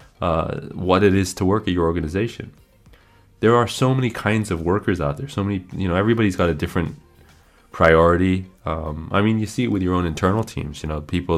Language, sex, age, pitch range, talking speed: English, male, 20-39, 80-100 Hz, 215 wpm